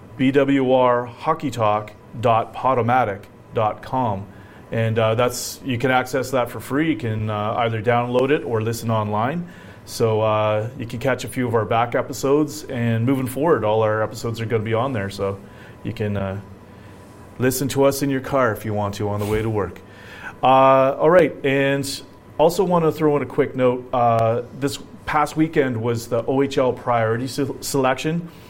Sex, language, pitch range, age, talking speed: male, English, 110-135 Hz, 30-49, 170 wpm